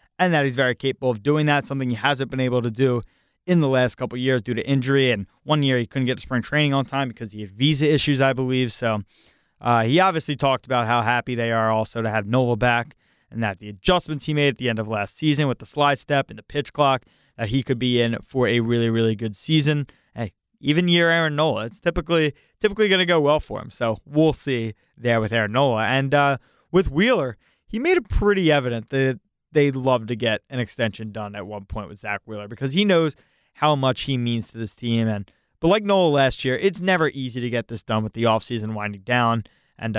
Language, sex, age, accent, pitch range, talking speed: English, male, 20-39, American, 115-150 Hz, 240 wpm